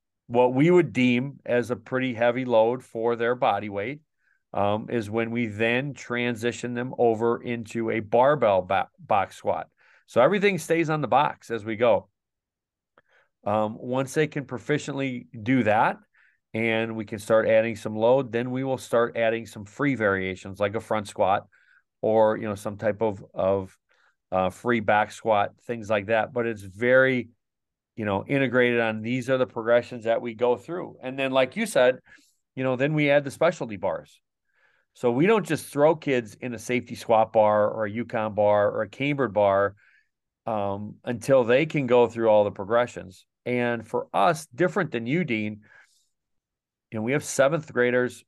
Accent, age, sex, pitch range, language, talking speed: American, 40-59, male, 110-130 Hz, English, 180 wpm